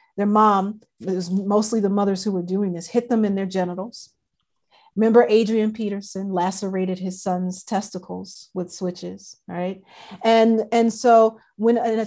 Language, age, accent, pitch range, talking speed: English, 40-59, American, 185-225 Hz, 155 wpm